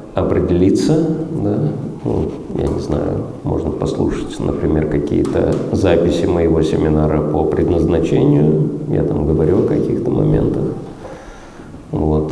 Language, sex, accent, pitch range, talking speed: Russian, male, native, 75-85 Hz, 105 wpm